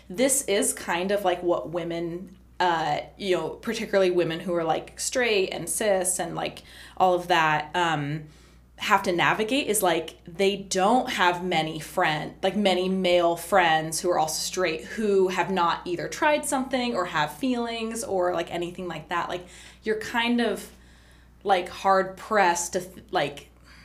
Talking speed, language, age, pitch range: 165 wpm, English, 20-39, 170-205 Hz